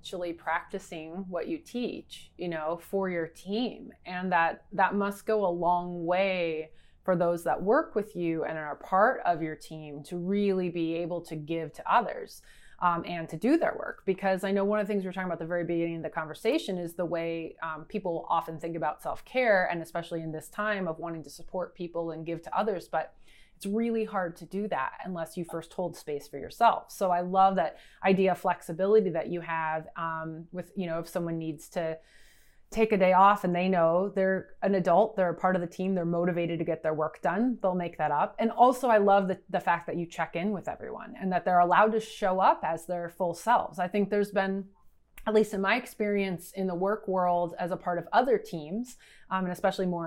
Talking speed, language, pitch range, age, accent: 225 wpm, English, 165-195 Hz, 20-39, American